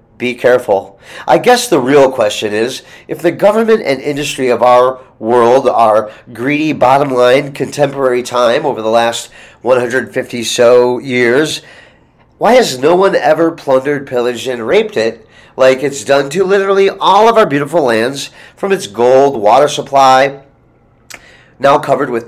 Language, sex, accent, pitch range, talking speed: English, male, American, 125-175 Hz, 145 wpm